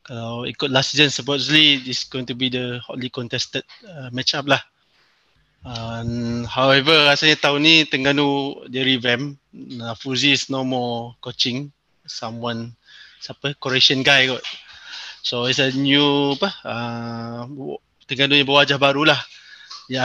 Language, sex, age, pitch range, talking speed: Malay, male, 20-39, 125-140 Hz, 130 wpm